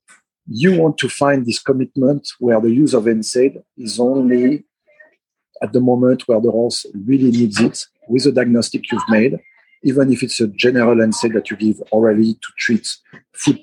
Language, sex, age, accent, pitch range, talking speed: English, male, 50-69, French, 115-135 Hz, 175 wpm